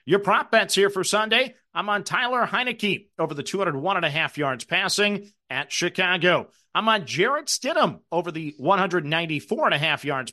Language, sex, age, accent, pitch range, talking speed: English, male, 40-59, American, 160-205 Hz, 180 wpm